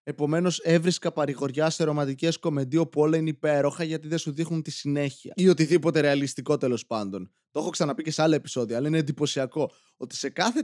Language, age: Greek, 20-39